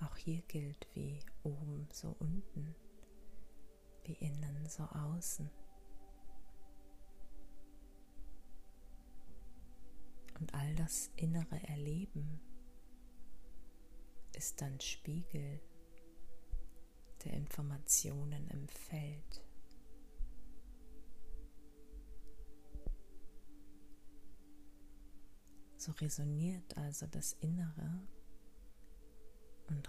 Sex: female